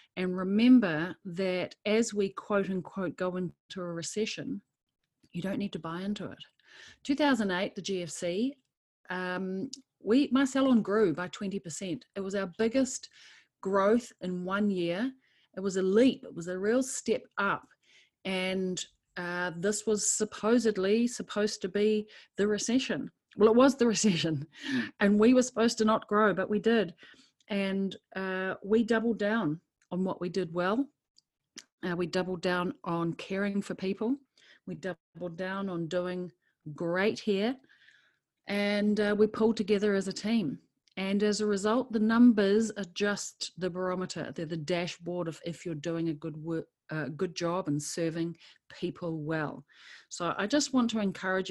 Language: English